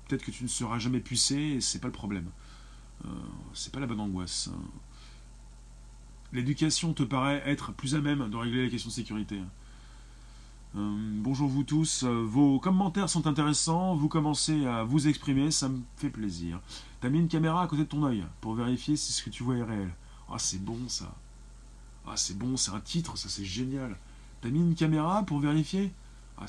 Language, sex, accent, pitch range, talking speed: French, male, French, 100-145 Hz, 200 wpm